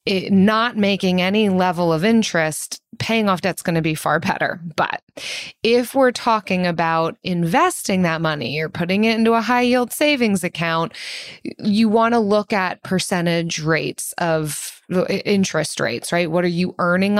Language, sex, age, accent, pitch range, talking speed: English, female, 20-39, American, 165-200 Hz, 160 wpm